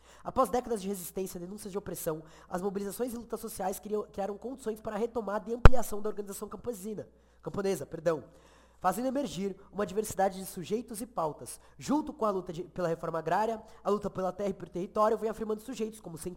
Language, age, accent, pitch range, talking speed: Portuguese, 20-39, Brazilian, 180-210 Hz, 195 wpm